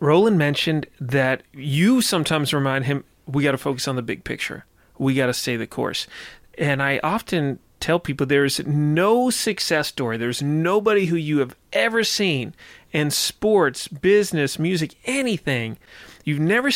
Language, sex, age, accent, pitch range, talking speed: English, male, 30-49, American, 135-170 Hz, 160 wpm